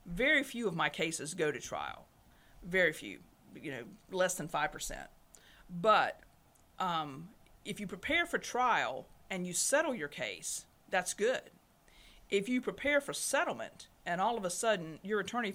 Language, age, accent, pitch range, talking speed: English, 50-69, American, 185-235 Hz, 160 wpm